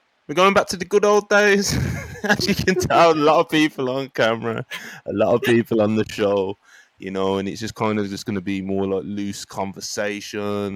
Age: 20-39